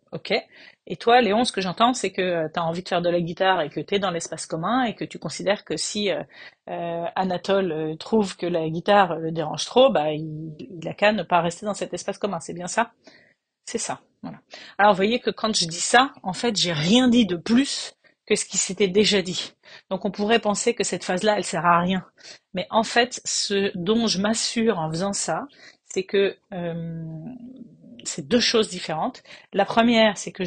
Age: 40-59